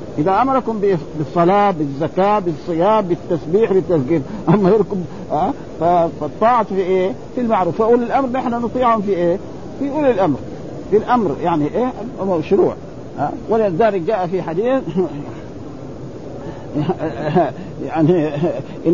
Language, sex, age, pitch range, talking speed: Arabic, male, 50-69, 175-220 Hz, 115 wpm